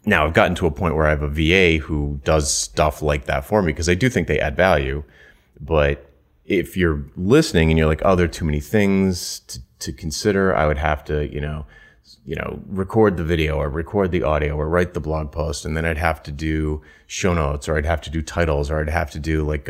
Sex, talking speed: male, 245 wpm